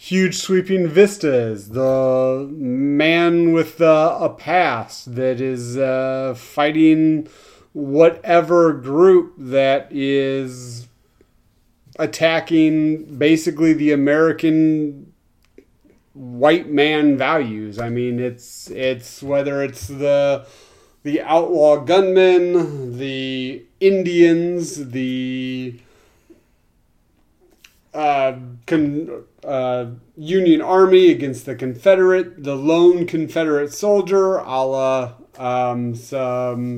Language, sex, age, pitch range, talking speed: English, male, 30-49, 130-170 Hz, 85 wpm